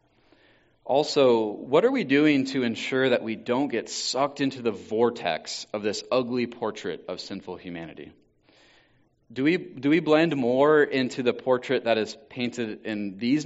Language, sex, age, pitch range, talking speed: English, male, 30-49, 105-140 Hz, 155 wpm